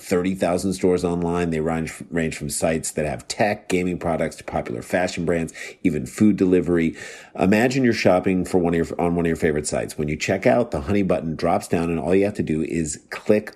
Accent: American